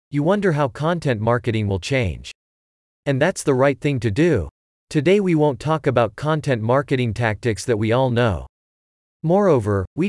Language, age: English, 40-59